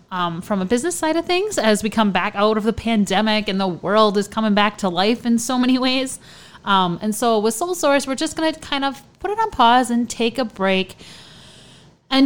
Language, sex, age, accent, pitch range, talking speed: English, female, 30-49, American, 175-220 Hz, 230 wpm